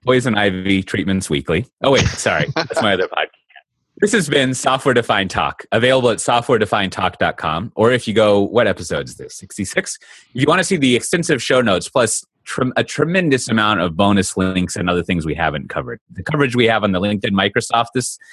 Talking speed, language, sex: 195 wpm, English, male